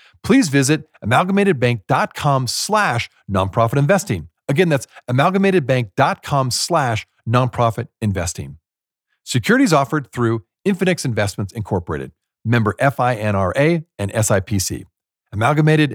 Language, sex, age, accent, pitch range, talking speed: English, male, 40-59, American, 110-165 Hz, 85 wpm